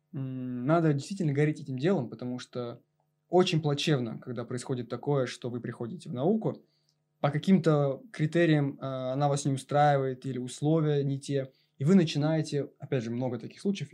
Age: 20-39